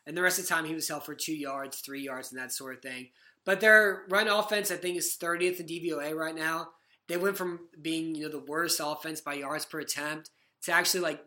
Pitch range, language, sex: 150-180 Hz, English, male